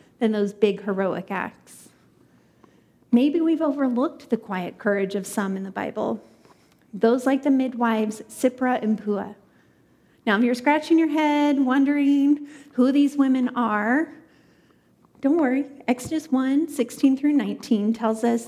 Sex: female